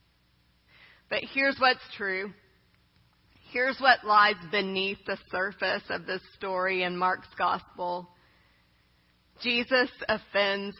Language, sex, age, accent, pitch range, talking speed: English, female, 40-59, American, 180-230 Hz, 100 wpm